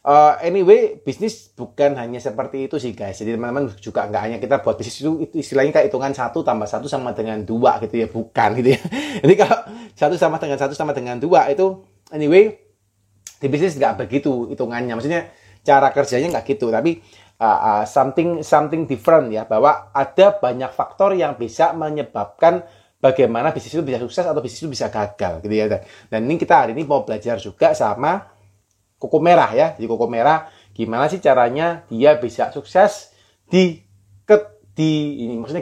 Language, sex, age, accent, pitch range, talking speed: Indonesian, male, 30-49, native, 115-170 Hz, 180 wpm